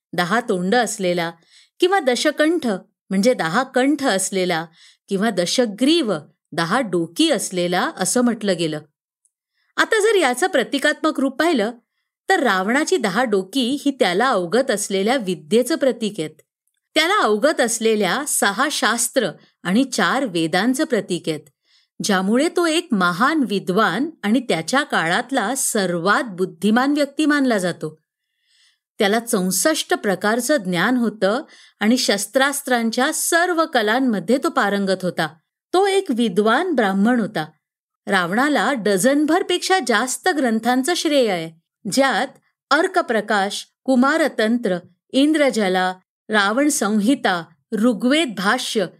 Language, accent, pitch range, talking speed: Marathi, native, 195-285 Hz, 110 wpm